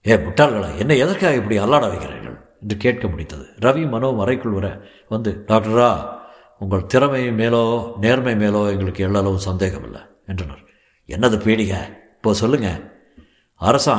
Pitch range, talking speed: 100-115 Hz, 135 wpm